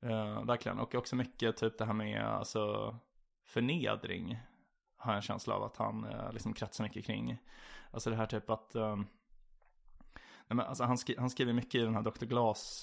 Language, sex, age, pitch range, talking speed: Swedish, male, 20-39, 105-120 Hz, 195 wpm